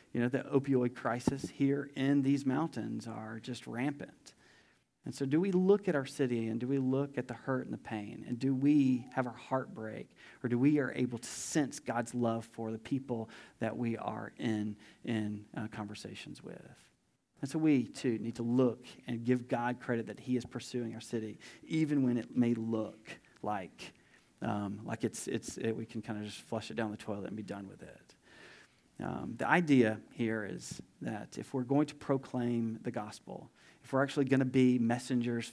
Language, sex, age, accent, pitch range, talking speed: English, male, 40-59, American, 115-140 Hz, 200 wpm